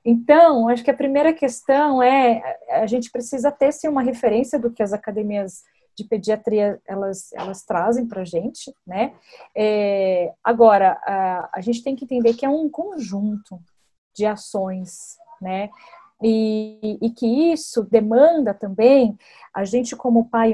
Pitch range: 220-275 Hz